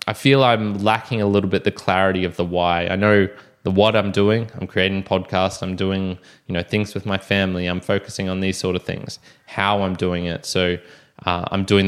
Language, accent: English, Australian